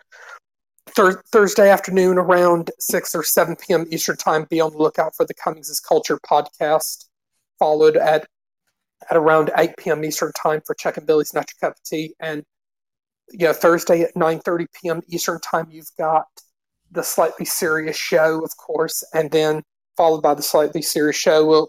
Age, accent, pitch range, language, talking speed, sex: 30-49, American, 155-165 Hz, English, 170 wpm, male